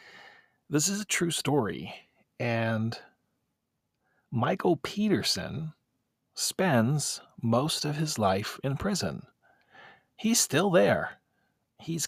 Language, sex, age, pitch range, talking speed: English, male, 40-59, 105-140 Hz, 95 wpm